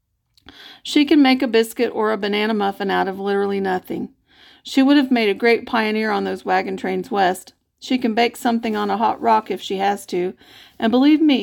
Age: 40-59